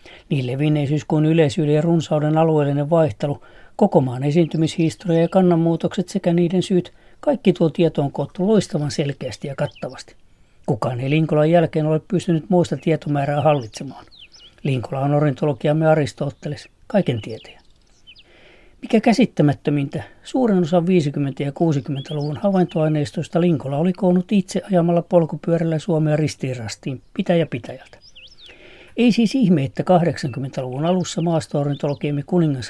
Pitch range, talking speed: 140-170 Hz, 115 wpm